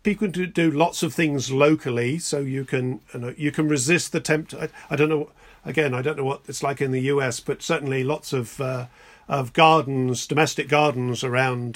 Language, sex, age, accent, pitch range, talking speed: English, male, 50-69, British, 130-155 Hz, 210 wpm